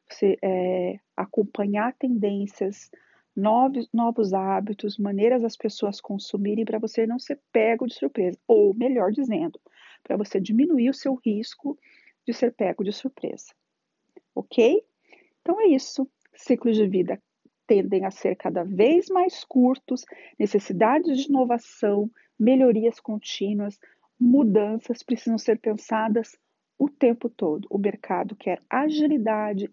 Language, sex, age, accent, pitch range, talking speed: Portuguese, female, 40-59, Brazilian, 205-265 Hz, 125 wpm